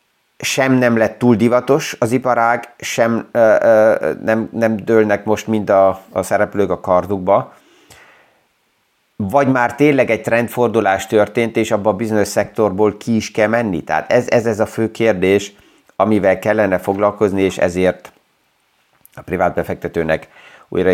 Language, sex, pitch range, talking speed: Hungarian, male, 95-110 Hz, 145 wpm